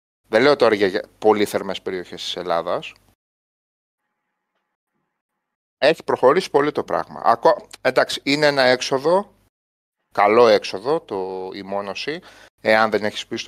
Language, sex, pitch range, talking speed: Greek, male, 105-135 Hz, 120 wpm